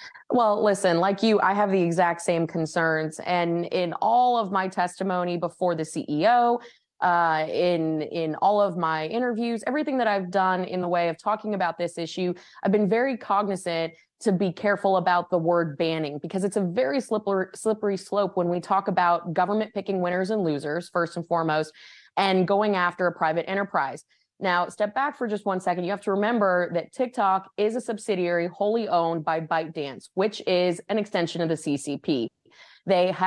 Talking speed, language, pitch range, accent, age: 185 wpm, English, 170-205 Hz, American, 20-39